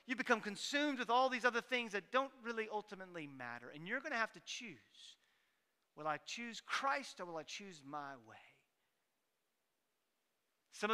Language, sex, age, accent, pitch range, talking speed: English, male, 40-59, American, 200-270 Hz, 170 wpm